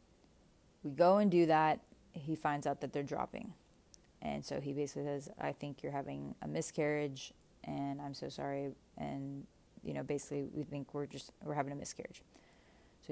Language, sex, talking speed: English, female, 180 wpm